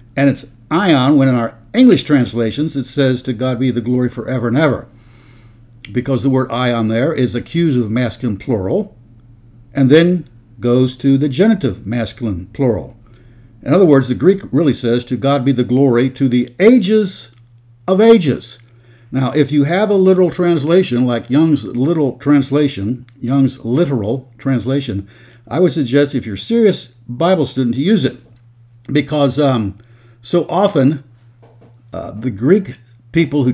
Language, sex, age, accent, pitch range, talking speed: English, male, 60-79, American, 115-140 Hz, 155 wpm